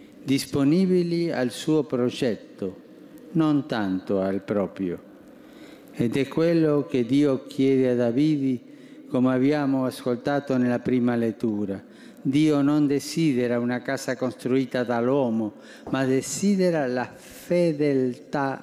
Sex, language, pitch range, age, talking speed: male, Italian, 120-165 Hz, 50-69, 105 wpm